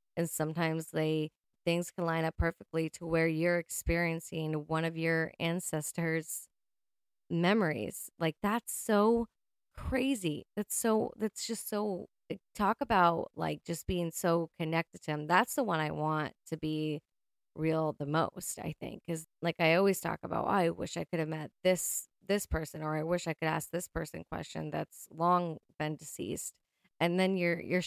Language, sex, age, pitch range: English, female, 20-39, 160-180 Hz